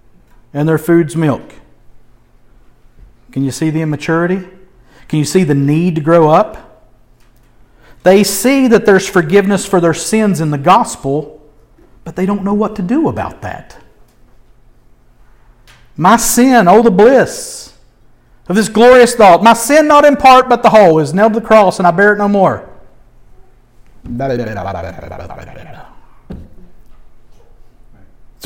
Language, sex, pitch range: English, male, 135-205 Hz